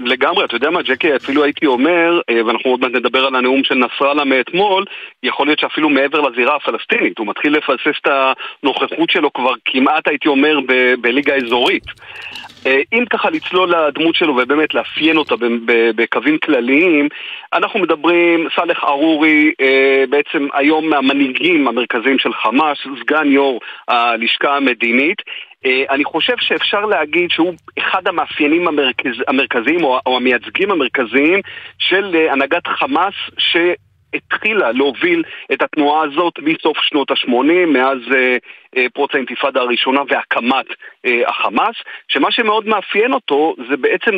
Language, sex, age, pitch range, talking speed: Hebrew, male, 40-59, 130-180 Hz, 135 wpm